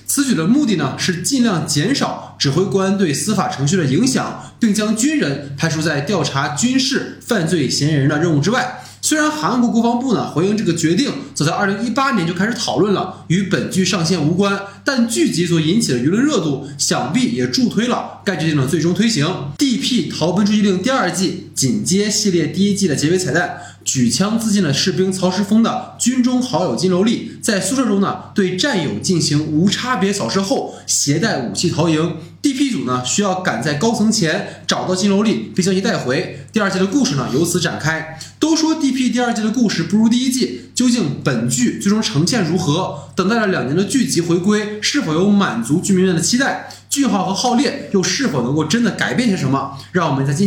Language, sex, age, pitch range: Chinese, male, 20-39, 170-230 Hz